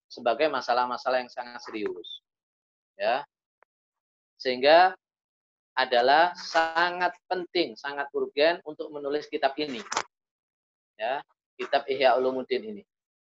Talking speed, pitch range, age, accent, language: 90 wpm, 125-175 Hz, 20-39, native, Indonesian